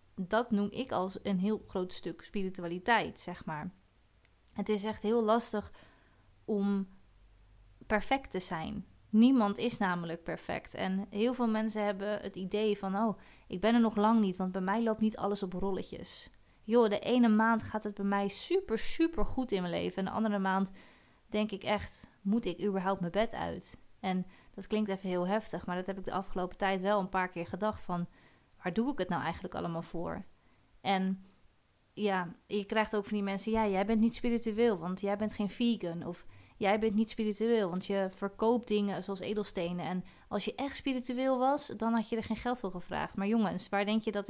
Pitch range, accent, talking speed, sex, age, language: 185-220 Hz, Dutch, 205 wpm, female, 20-39, Dutch